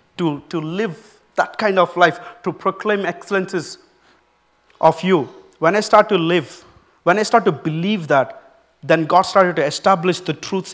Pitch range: 155-185 Hz